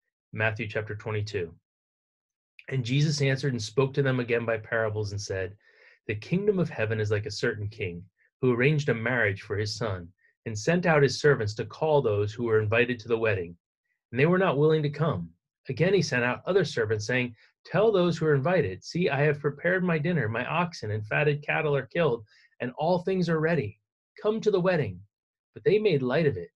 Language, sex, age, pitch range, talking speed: English, male, 30-49, 115-165 Hz, 210 wpm